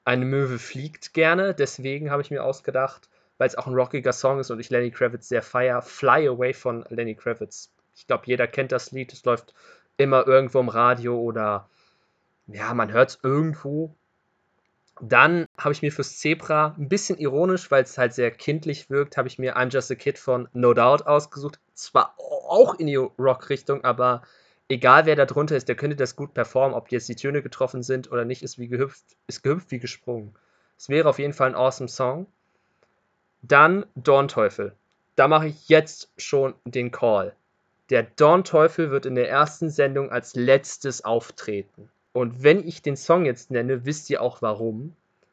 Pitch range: 125-145 Hz